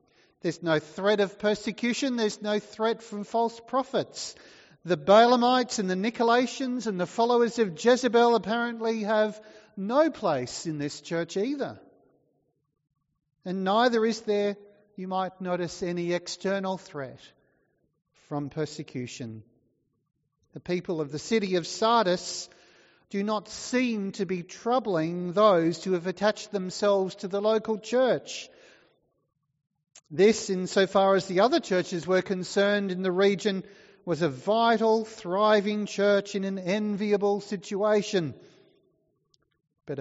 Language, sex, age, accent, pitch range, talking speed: English, male, 40-59, Australian, 165-220 Hz, 125 wpm